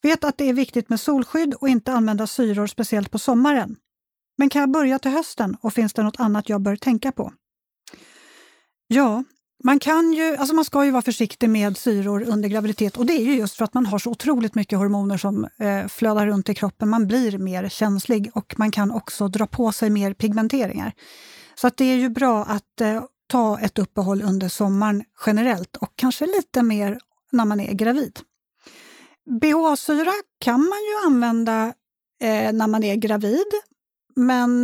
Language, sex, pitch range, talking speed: Swedish, female, 210-265 Hz, 175 wpm